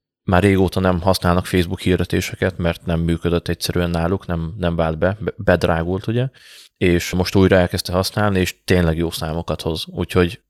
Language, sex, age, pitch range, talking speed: Hungarian, male, 30-49, 85-105 Hz, 160 wpm